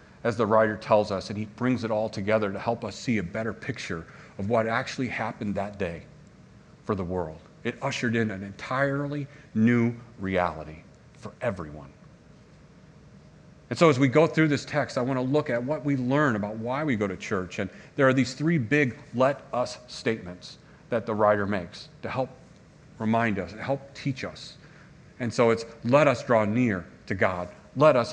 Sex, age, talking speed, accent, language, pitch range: male, 40-59, 190 wpm, American, English, 105-140 Hz